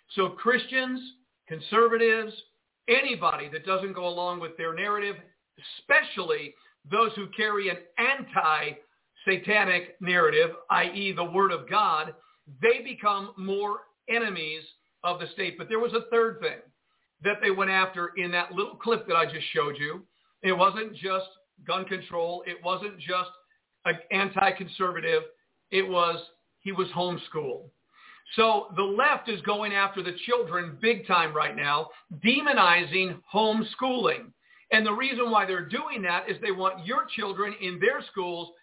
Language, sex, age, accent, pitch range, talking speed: English, male, 50-69, American, 175-225 Hz, 145 wpm